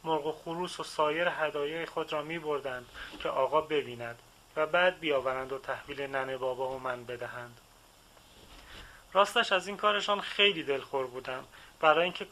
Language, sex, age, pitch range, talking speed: Persian, male, 30-49, 135-180 Hz, 155 wpm